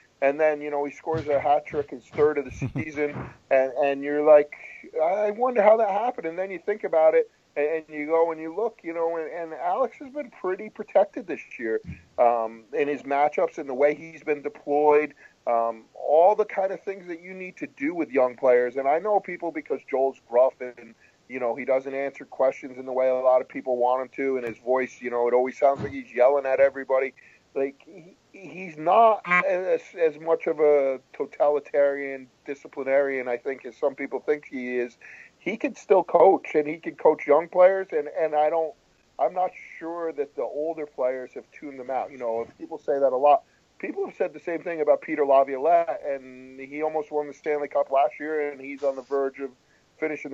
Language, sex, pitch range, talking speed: English, male, 135-165 Hz, 215 wpm